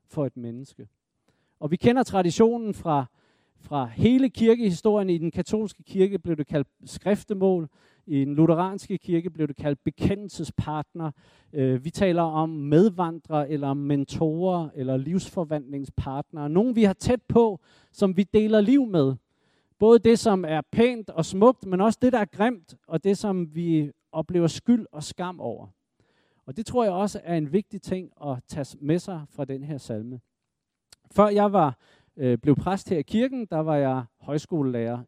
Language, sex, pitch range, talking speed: Danish, male, 145-200 Hz, 165 wpm